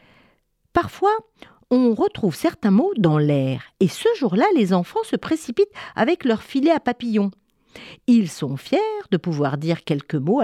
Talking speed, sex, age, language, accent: 155 wpm, female, 50-69, French, French